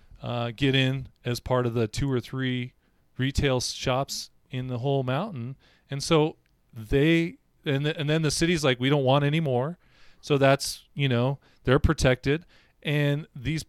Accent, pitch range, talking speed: American, 115-145 Hz, 165 wpm